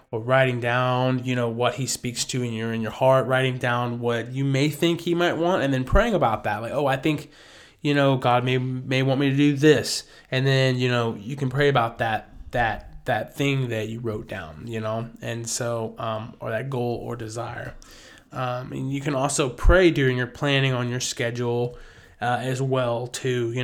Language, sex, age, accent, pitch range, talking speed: English, male, 20-39, American, 120-135 Hz, 215 wpm